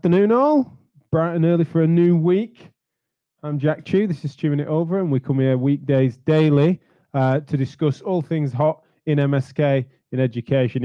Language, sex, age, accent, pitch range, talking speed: English, male, 20-39, British, 125-150 Hz, 190 wpm